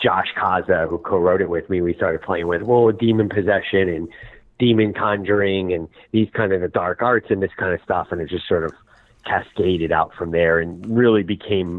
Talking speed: 210 wpm